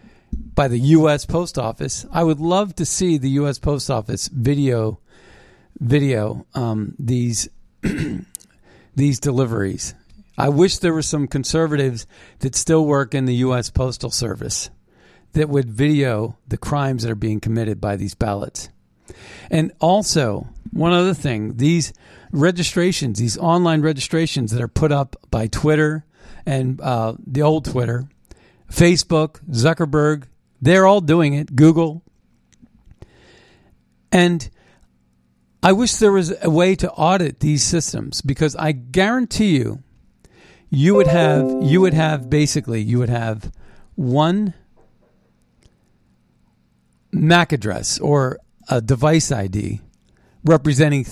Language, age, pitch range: English, 50-69, 120-160 Hz